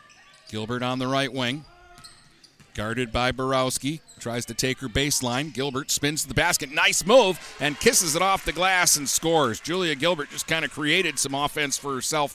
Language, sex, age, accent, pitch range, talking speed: English, male, 50-69, American, 125-160 Hz, 185 wpm